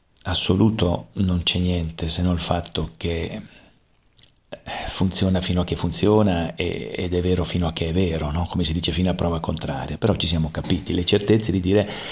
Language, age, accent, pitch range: Italian, 40-59, native, 85-105 Hz